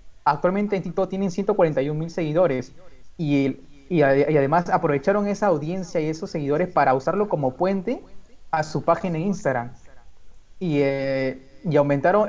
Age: 30-49